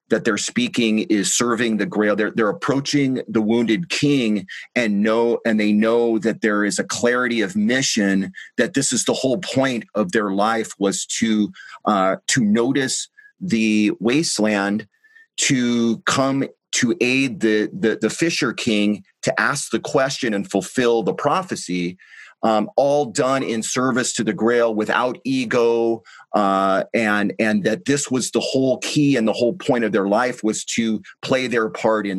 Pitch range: 110-130 Hz